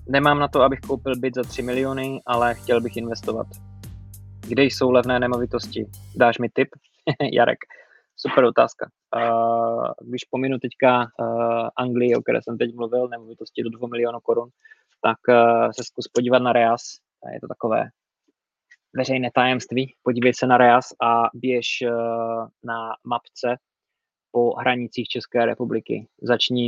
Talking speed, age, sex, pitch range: 135 wpm, 20-39, male, 110-125 Hz